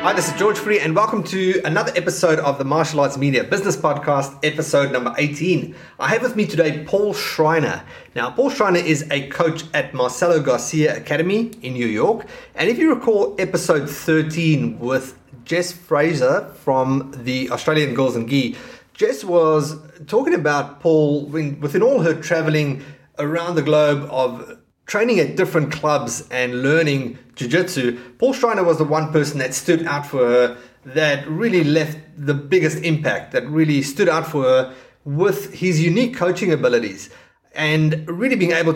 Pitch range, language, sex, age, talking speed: 140-170 Hz, English, male, 30-49, 165 wpm